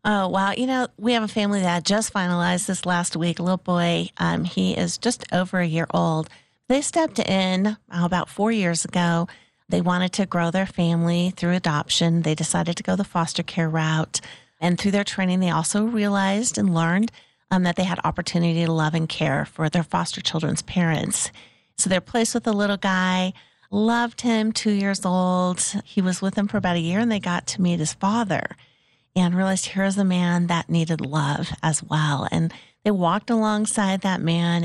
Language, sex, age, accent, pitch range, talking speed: English, female, 40-59, American, 170-205 Hz, 205 wpm